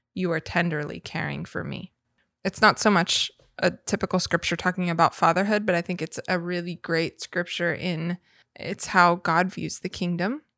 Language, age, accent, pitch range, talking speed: English, 20-39, American, 170-185 Hz, 175 wpm